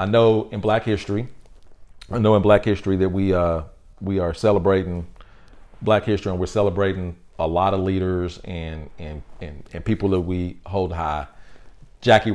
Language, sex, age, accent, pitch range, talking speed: English, male, 40-59, American, 85-100 Hz, 170 wpm